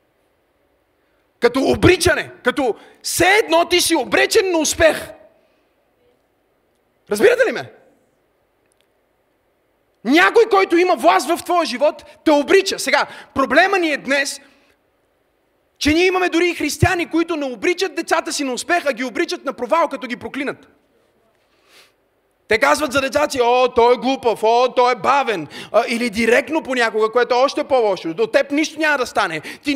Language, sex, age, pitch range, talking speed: Bulgarian, male, 30-49, 240-320 Hz, 155 wpm